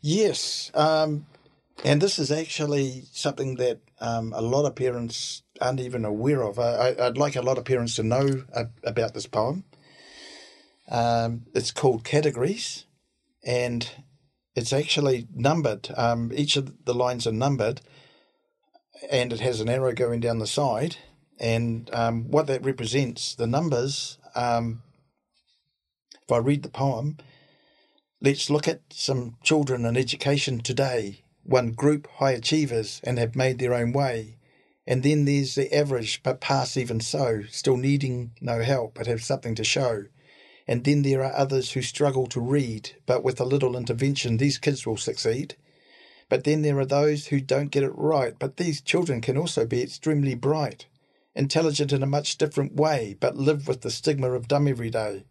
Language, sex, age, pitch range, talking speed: English, male, 50-69, 120-145 Hz, 165 wpm